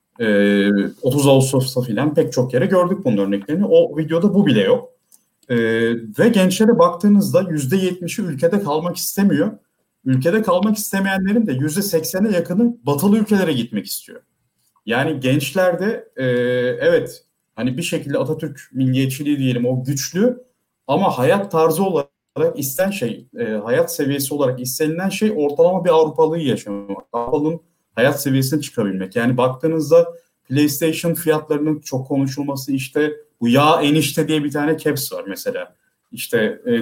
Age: 40-59